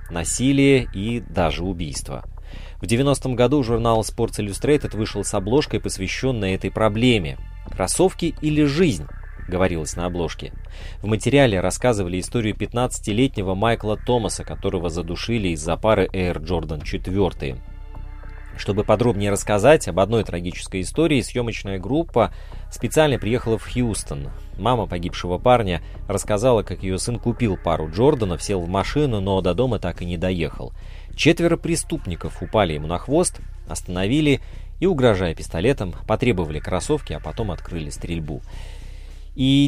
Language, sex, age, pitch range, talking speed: Russian, male, 20-39, 90-125 Hz, 130 wpm